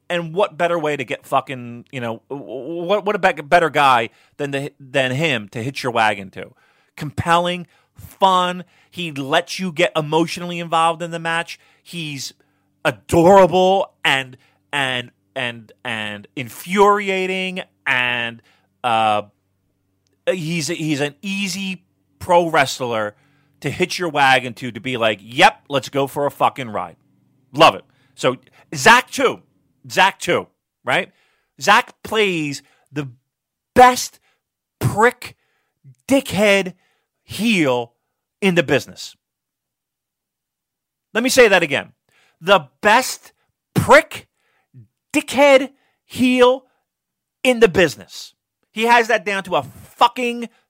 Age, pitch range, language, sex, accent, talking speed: 30-49, 130-195 Hz, English, male, American, 120 wpm